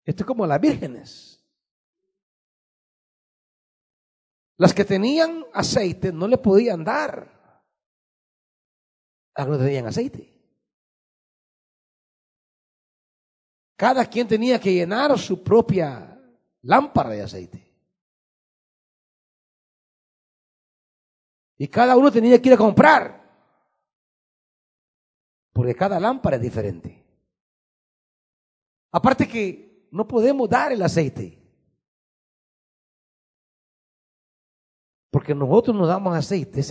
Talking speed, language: 90 wpm, Spanish